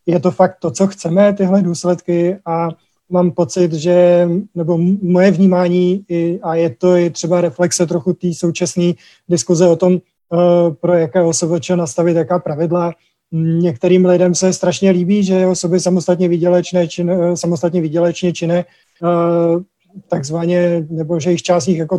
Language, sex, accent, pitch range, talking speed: Czech, male, native, 165-175 Hz, 140 wpm